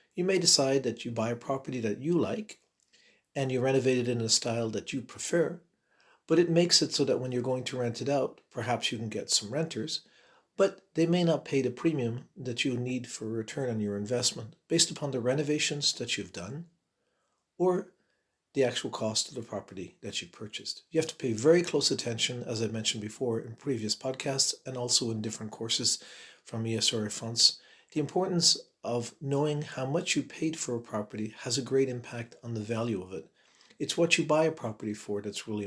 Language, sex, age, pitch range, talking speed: English, male, 50-69, 115-145 Hz, 210 wpm